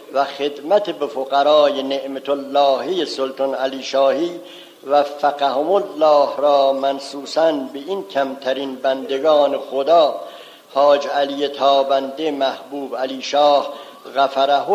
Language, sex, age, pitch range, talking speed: Persian, male, 60-79, 140-180 Hz, 105 wpm